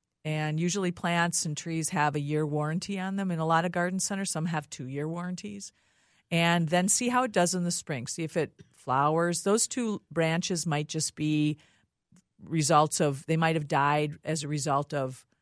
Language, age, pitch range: English, 50-69, 145-170 Hz